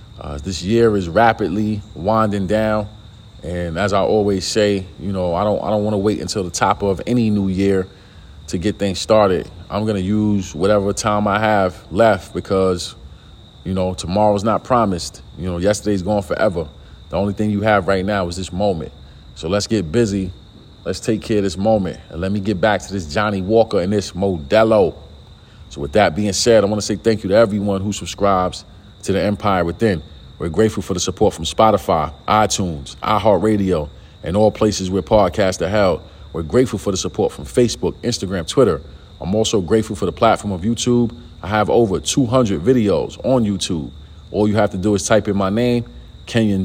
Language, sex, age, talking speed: English, male, 40-59, 200 wpm